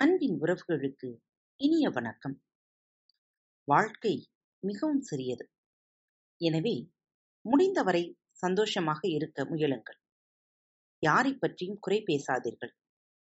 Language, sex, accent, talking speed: Tamil, female, native, 70 wpm